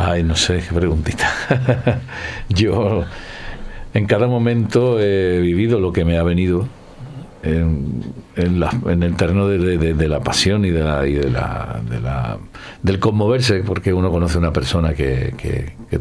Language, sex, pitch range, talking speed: Spanish, male, 80-100 Hz, 170 wpm